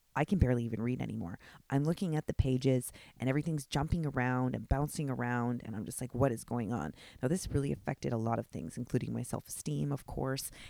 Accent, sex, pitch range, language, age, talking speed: American, female, 125-165 Hz, English, 30-49, 220 wpm